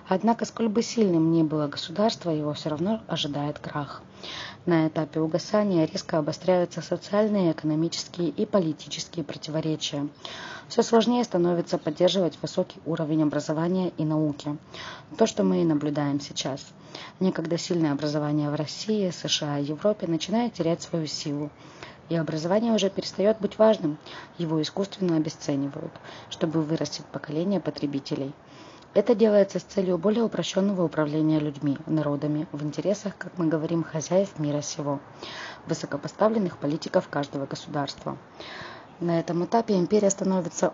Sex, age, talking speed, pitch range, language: female, 20-39, 130 wpm, 150-185 Hz, Russian